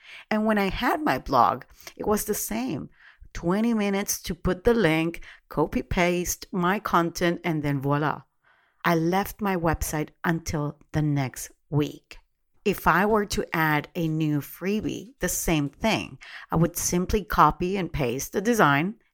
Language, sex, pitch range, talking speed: English, female, 150-185 Hz, 155 wpm